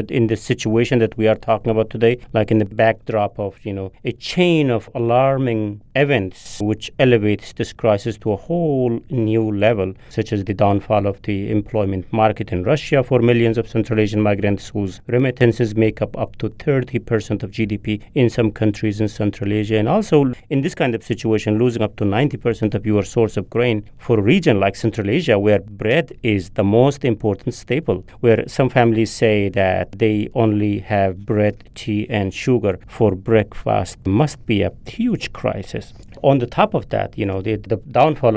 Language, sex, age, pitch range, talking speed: English, male, 40-59, 105-125 Hz, 185 wpm